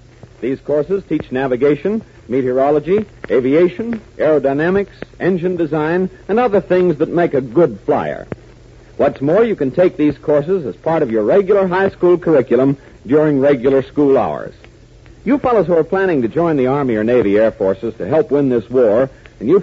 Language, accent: English, American